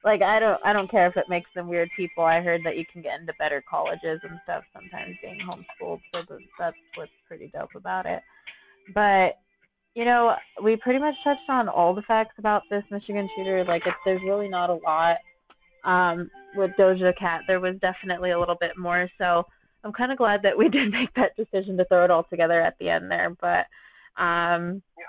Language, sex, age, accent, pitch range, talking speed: English, female, 20-39, American, 180-215 Hz, 210 wpm